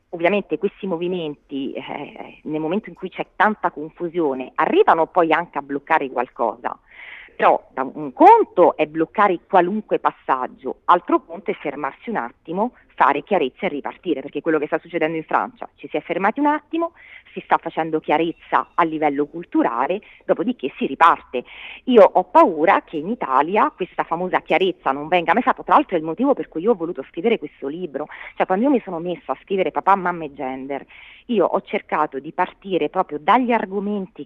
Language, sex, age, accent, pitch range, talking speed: Italian, female, 40-59, native, 155-210 Hz, 180 wpm